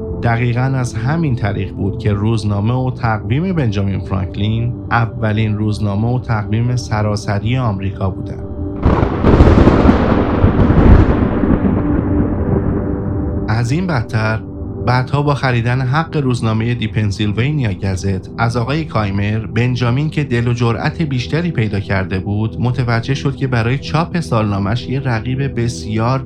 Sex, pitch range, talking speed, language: male, 100-125 Hz, 110 wpm, Persian